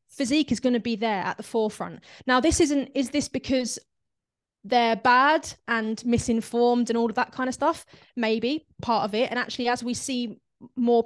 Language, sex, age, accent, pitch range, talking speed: English, female, 20-39, British, 220-255 Hz, 195 wpm